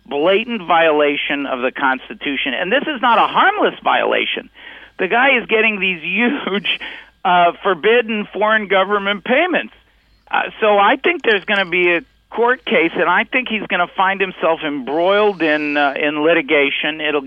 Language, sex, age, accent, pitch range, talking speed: English, male, 50-69, American, 165-215 Hz, 165 wpm